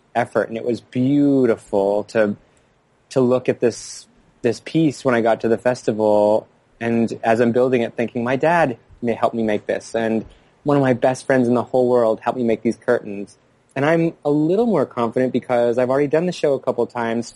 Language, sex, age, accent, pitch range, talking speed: English, male, 20-39, American, 105-125 Hz, 215 wpm